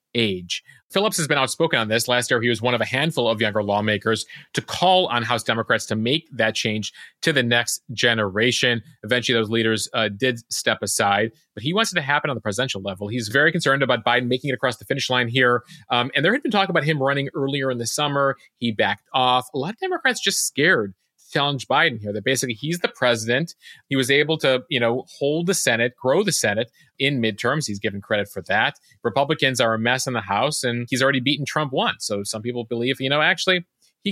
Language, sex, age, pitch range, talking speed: English, male, 30-49, 115-145 Hz, 230 wpm